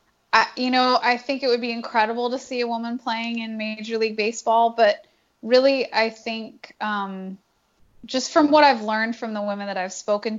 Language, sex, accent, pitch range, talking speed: English, female, American, 190-230 Hz, 190 wpm